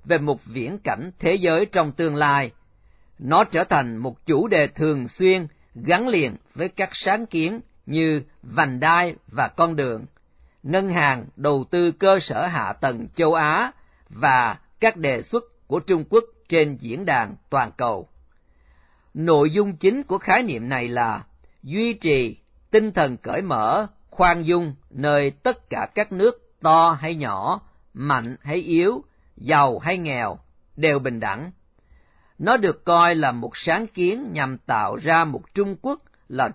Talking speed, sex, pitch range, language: 160 wpm, male, 140-195 Hz, Vietnamese